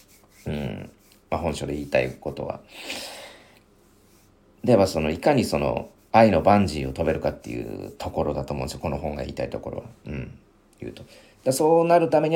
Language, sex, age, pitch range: Japanese, male, 40-59, 75-105 Hz